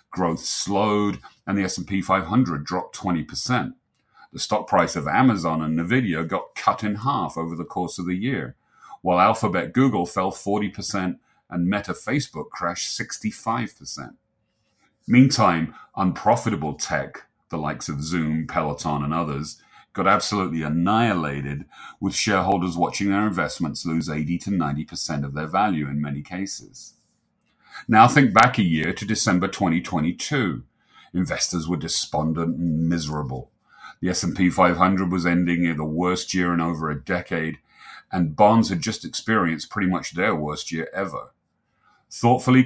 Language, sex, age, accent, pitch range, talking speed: English, male, 40-59, British, 80-100 Hz, 140 wpm